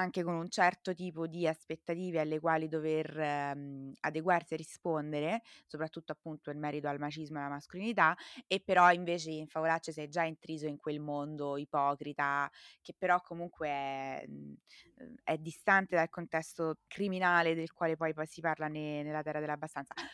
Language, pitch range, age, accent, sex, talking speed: Italian, 160-200 Hz, 20-39, native, female, 160 wpm